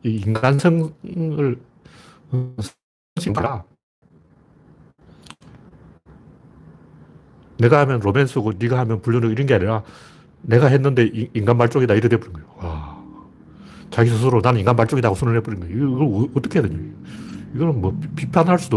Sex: male